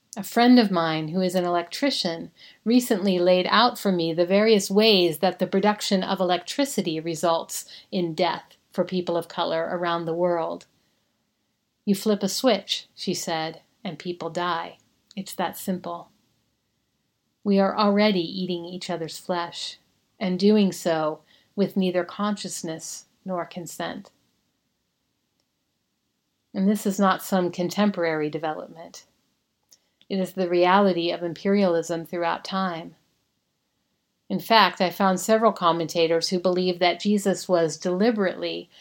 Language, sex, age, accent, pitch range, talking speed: English, female, 40-59, American, 170-200 Hz, 130 wpm